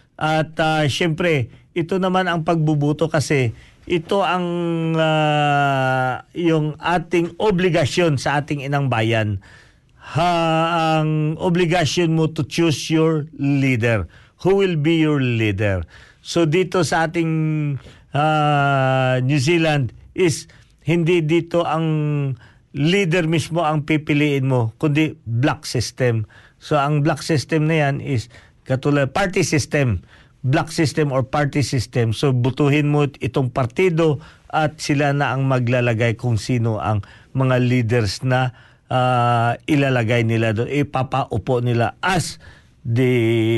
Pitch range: 120-155 Hz